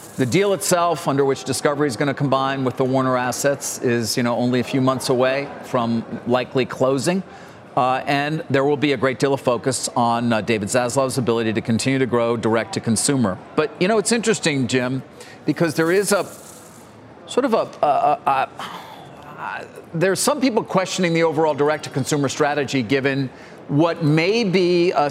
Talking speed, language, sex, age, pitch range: 185 wpm, English, male, 40-59, 125-155 Hz